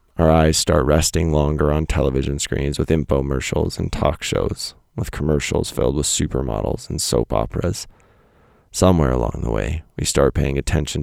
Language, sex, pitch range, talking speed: English, male, 75-90 Hz, 160 wpm